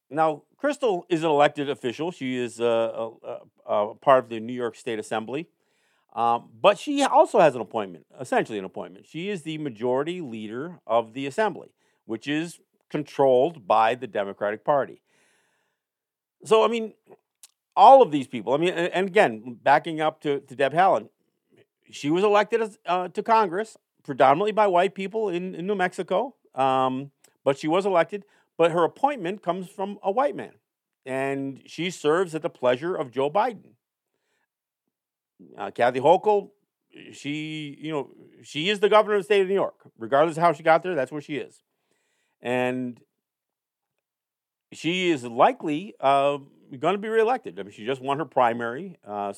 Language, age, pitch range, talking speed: English, 50-69, 120-195 Hz, 170 wpm